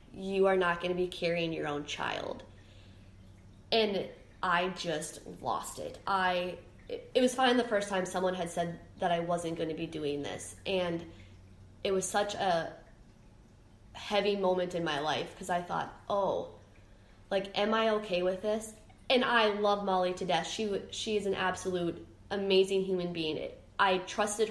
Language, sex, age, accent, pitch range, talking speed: English, female, 10-29, American, 170-210 Hz, 170 wpm